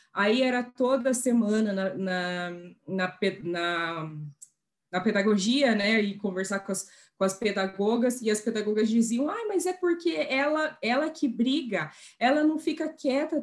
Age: 20-39